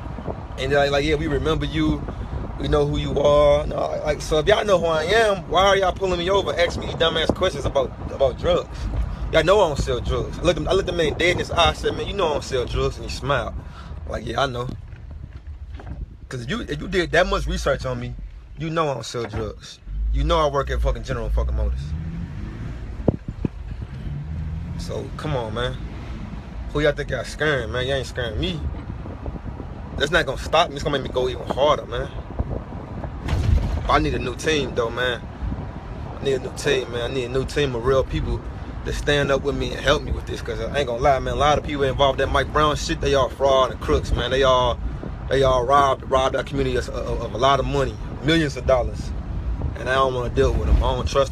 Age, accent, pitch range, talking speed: 20-39, American, 95-140 Hz, 235 wpm